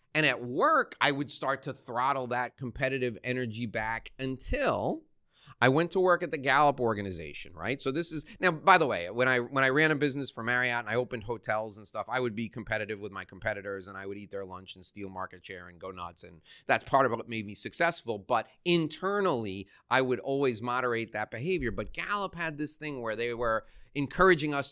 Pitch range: 110-145 Hz